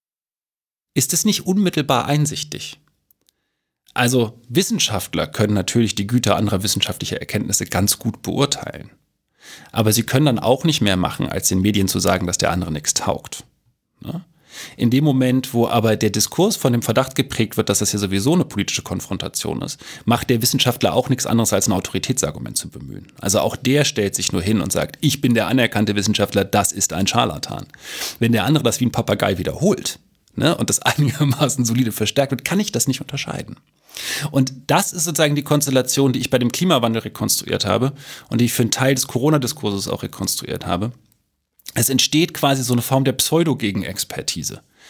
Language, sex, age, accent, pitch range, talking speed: German, male, 30-49, German, 110-145 Hz, 180 wpm